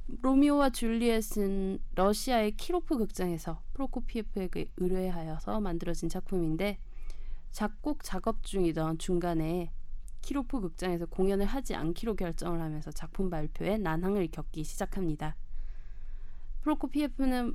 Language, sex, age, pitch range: Korean, female, 20-39, 170-230 Hz